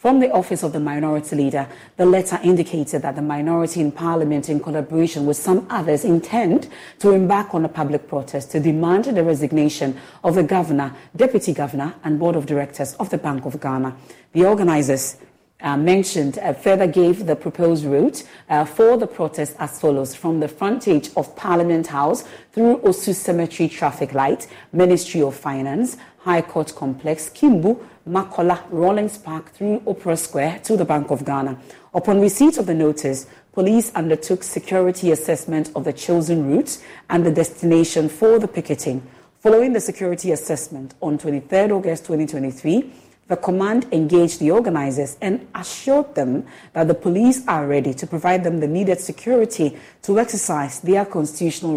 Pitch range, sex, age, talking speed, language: 150-190 Hz, female, 40-59, 160 wpm, English